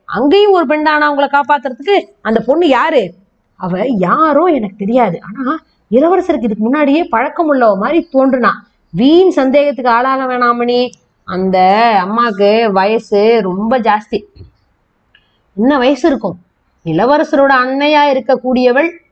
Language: Tamil